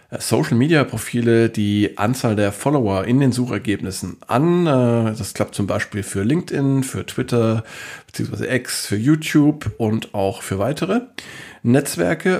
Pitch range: 105-120 Hz